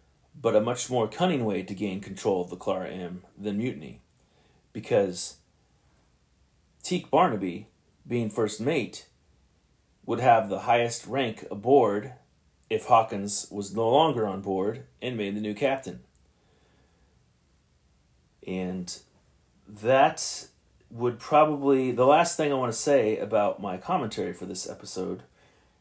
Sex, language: male, English